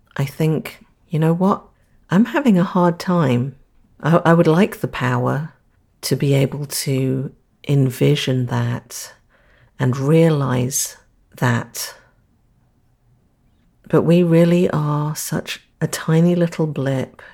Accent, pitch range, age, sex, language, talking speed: British, 130-160 Hz, 40-59, female, English, 120 wpm